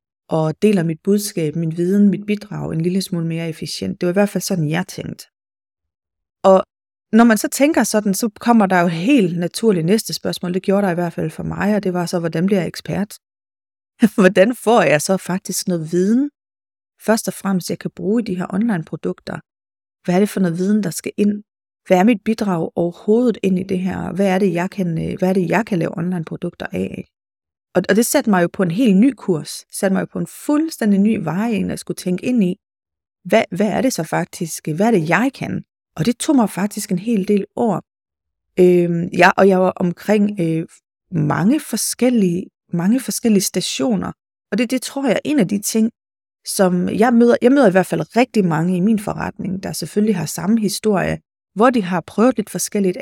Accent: native